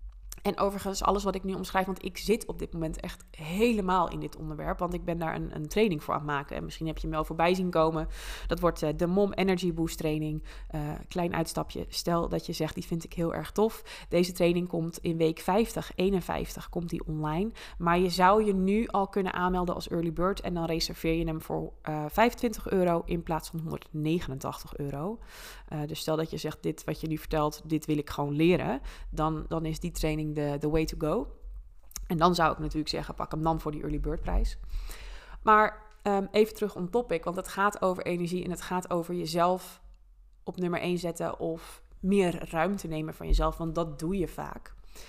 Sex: female